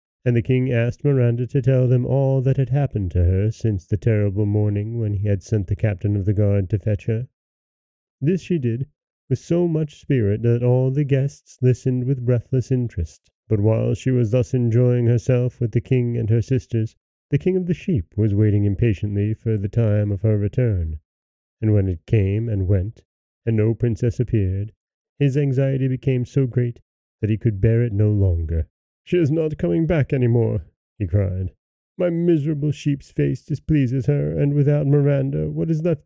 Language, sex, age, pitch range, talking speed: English, male, 30-49, 105-135 Hz, 190 wpm